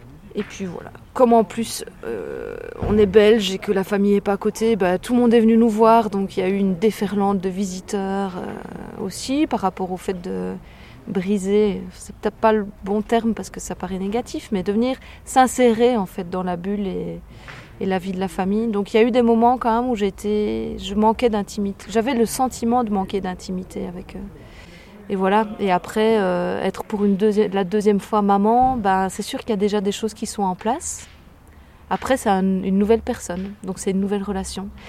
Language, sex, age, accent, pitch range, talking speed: French, female, 20-39, French, 190-225 Hz, 220 wpm